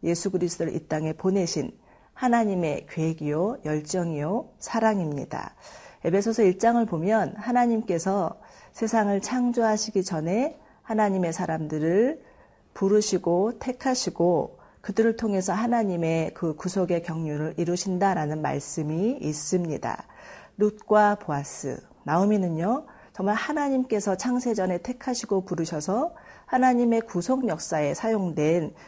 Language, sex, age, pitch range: Korean, female, 40-59, 170-225 Hz